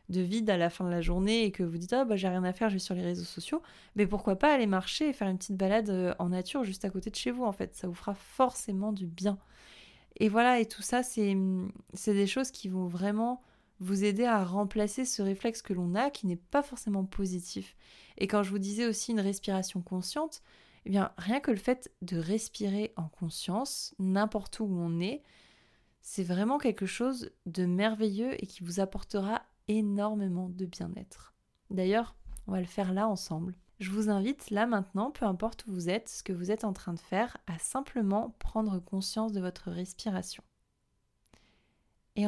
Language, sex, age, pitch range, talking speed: French, female, 20-39, 185-225 Hz, 205 wpm